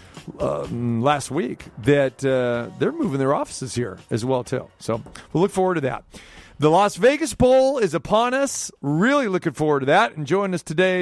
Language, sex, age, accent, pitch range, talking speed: English, male, 40-59, American, 130-165 Hz, 195 wpm